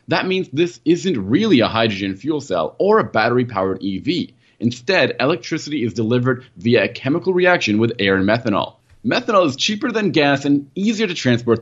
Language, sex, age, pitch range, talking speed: English, male, 30-49, 115-175 Hz, 175 wpm